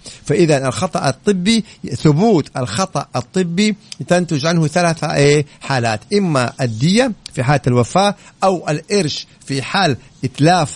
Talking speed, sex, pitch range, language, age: 110 wpm, male, 140-175 Hz, Arabic, 50-69